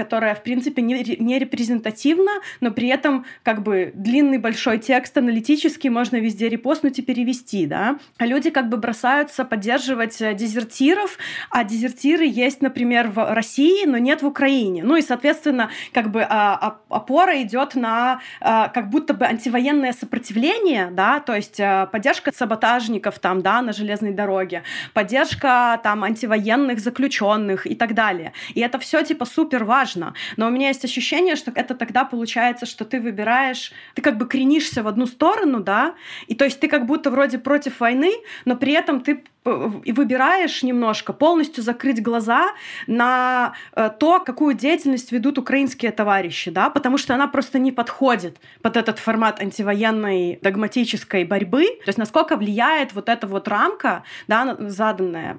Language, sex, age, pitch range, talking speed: Russian, female, 20-39, 215-275 Hz, 155 wpm